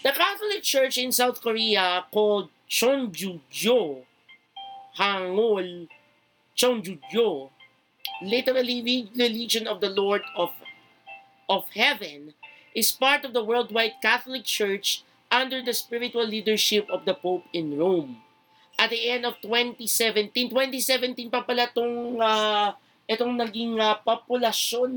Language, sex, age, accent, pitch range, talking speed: Filipino, male, 50-69, native, 190-245 Hz, 115 wpm